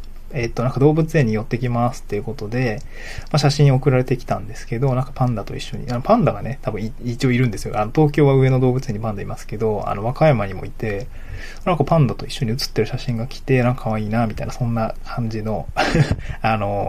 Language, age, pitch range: Japanese, 20-39, 110-140 Hz